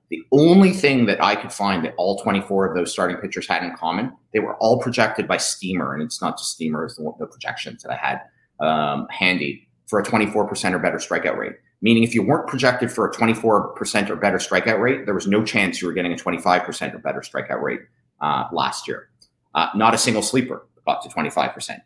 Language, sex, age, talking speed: English, male, 30-49, 230 wpm